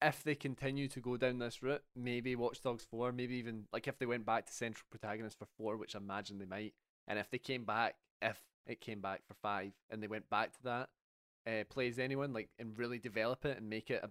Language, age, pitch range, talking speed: English, 20-39, 110-130 Hz, 245 wpm